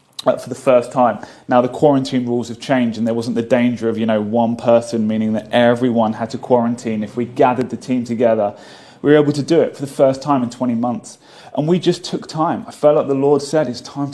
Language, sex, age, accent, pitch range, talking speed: English, male, 30-49, British, 120-150 Hz, 245 wpm